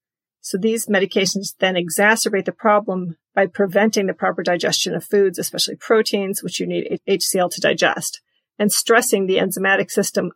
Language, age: English, 40-59